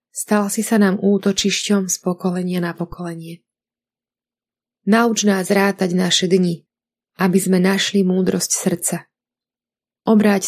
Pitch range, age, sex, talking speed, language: 180-205 Hz, 30-49, female, 110 wpm, Slovak